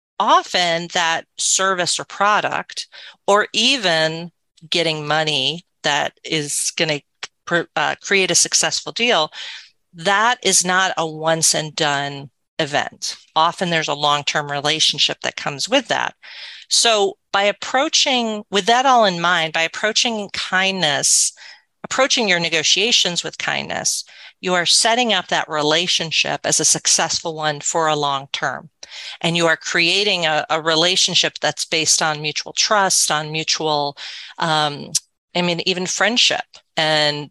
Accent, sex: American, female